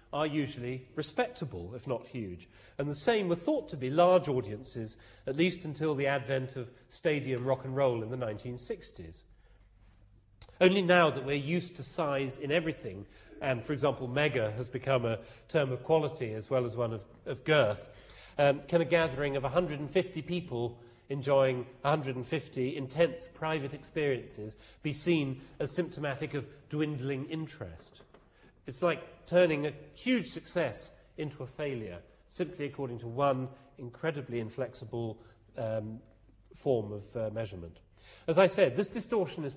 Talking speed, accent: 150 wpm, British